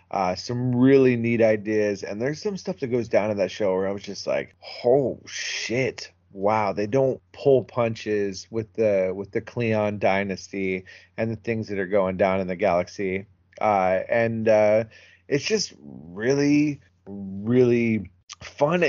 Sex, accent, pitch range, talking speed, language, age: male, American, 100-125 Hz, 160 wpm, English, 30-49